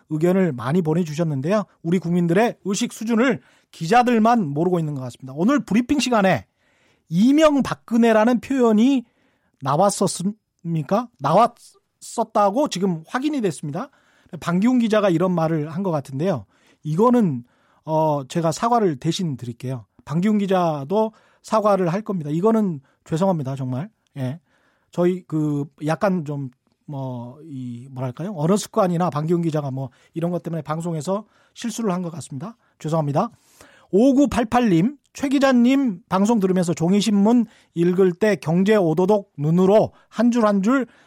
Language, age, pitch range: Korean, 30-49, 160-220 Hz